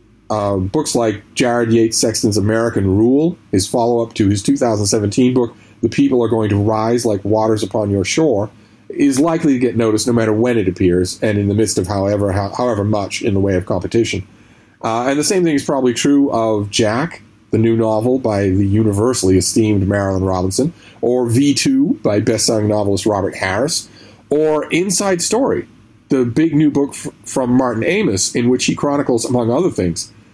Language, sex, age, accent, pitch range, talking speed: English, male, 40-59, American, 105-140 Hz, 190 wpm